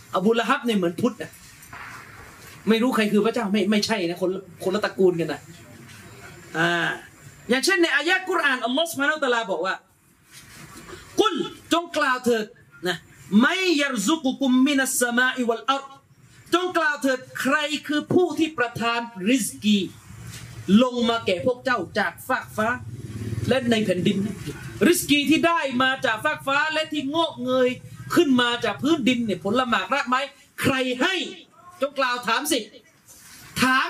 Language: Thai